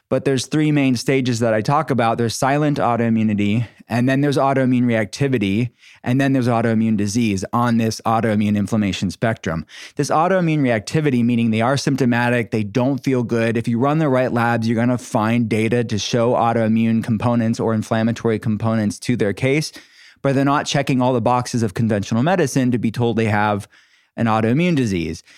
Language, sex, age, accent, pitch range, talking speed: English, male, 20-39, American, 115-135 Hz, 180 wpm